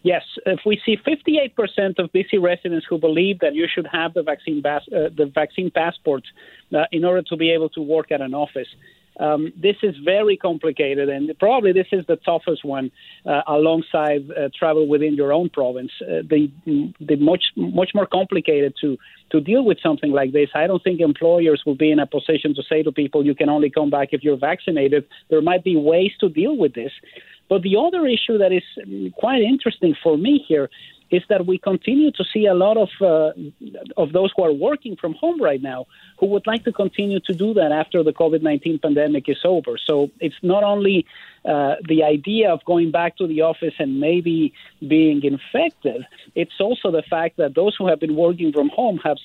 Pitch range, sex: 150-190 Hz, male